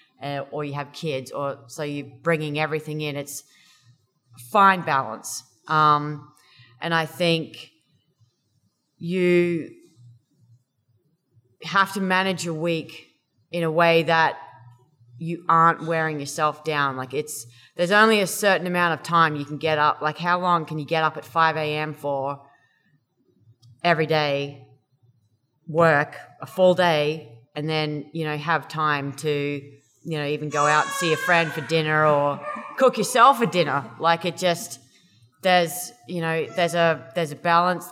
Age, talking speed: 30-49, 150 wpm